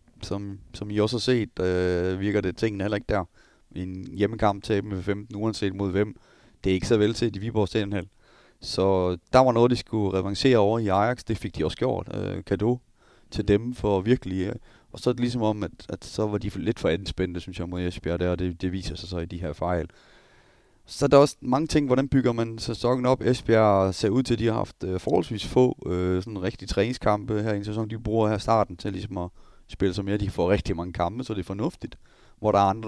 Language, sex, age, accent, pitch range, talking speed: Danish, male, 30-49, native, 95-110 Hz, 245 wpm